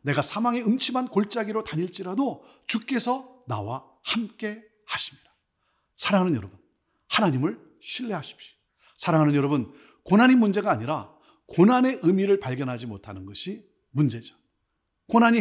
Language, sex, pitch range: Korean, male, 145-230 Hz